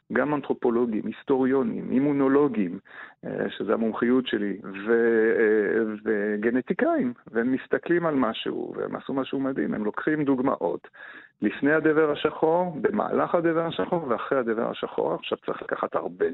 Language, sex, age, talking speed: Hebrew, male, 50-69, 120 wpm